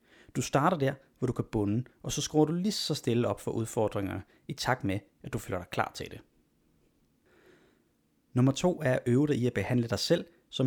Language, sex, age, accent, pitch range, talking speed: Danish, male, 30-49, native, 105-140 Hz, 220 wpm